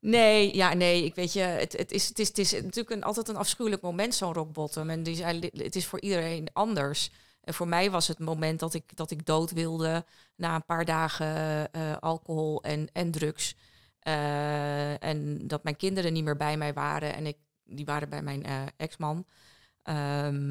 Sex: female